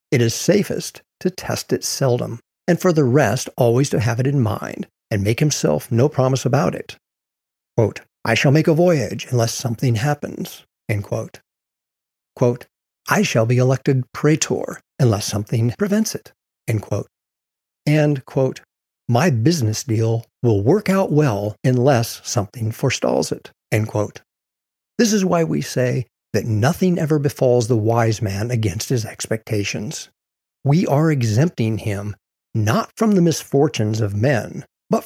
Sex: male